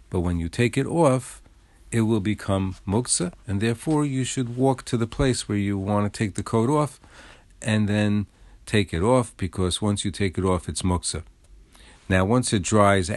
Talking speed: 195 wpm